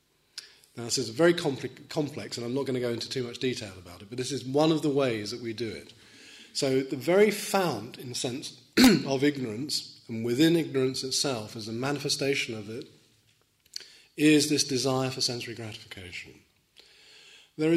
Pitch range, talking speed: 115-150 Hz, 185 wpm